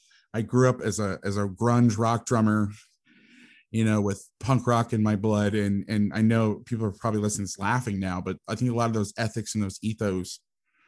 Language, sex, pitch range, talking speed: English, male, 105-120 Hz, 215 wpm